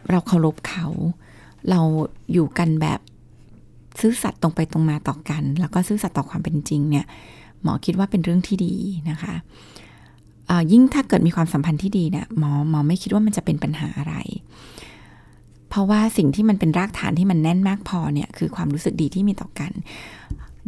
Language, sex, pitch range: Thai, female, 155-195 Hz